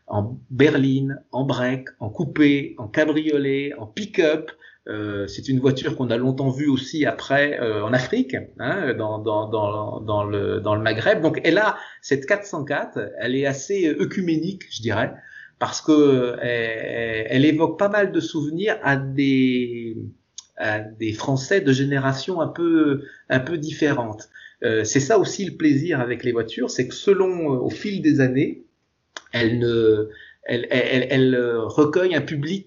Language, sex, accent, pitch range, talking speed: French, male, French, 110-150 Hz, 165 wpm